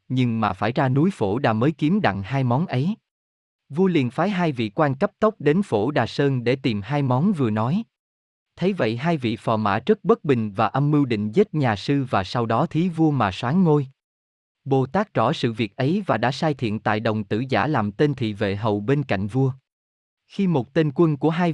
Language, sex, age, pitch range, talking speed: Vietnamese, male, 20-39, 110-155 Hz, 230 wpm